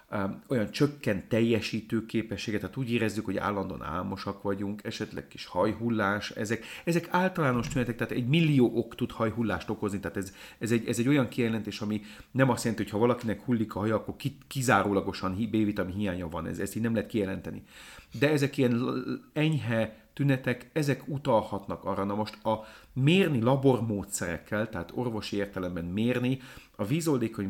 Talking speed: 160 wpm